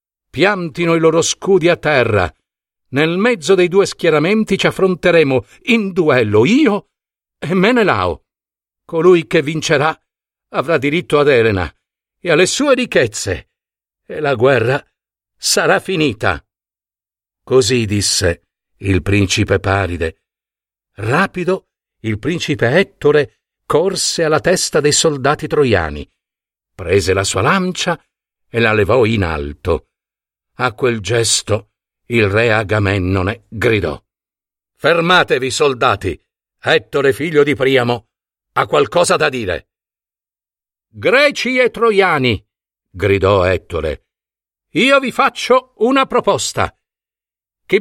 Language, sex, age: Italian, male, 50-69